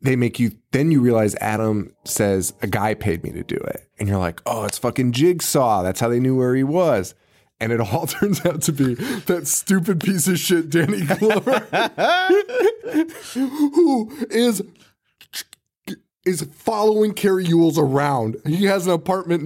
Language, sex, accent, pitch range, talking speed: English, male, American, 115-185 Hz, 165 wpm